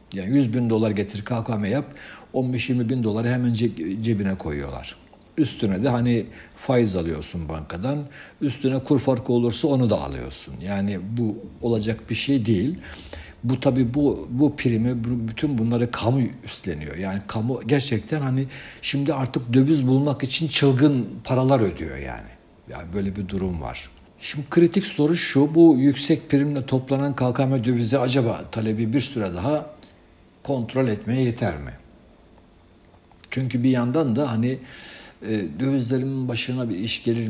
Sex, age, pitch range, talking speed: male, 60-79, 90-130 Hz, 145 wpm